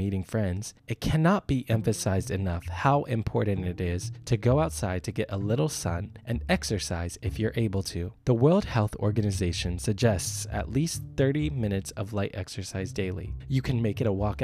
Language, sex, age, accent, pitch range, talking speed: English, male, 20-39, American, 105-140 Hz, 185 wpm